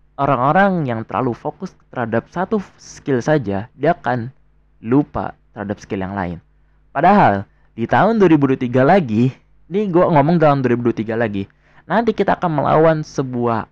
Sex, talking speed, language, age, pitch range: male, 135 wpm, Indonesian, 20-39, 110-150 Hz